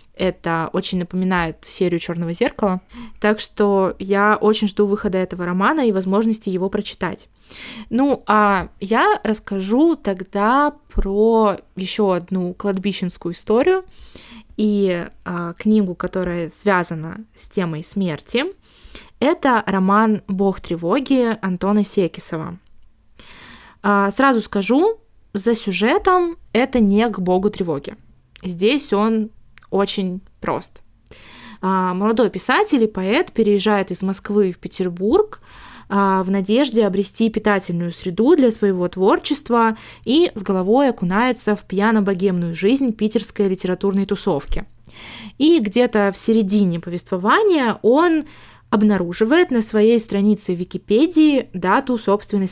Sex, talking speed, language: female, 110 wpm, Russian